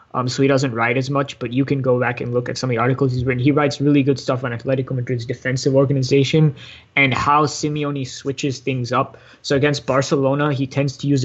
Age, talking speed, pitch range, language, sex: 20-39, 235 wpm, 125-140 Hz, English, male